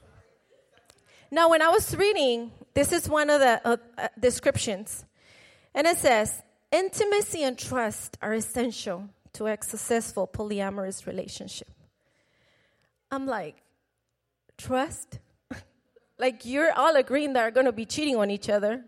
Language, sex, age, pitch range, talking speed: English, female, 30-49, 225-285 Hz, 135 wpm